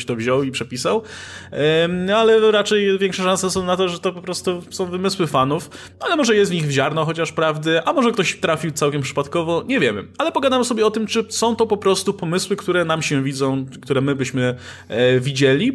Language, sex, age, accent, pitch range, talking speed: Polish, male, 20-39, native, 130-185 Hz, 205 wpm